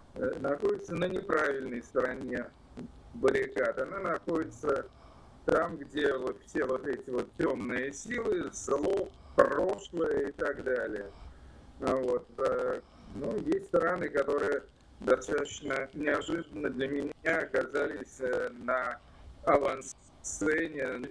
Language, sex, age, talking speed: Russian, male, 50-69, 90 wpm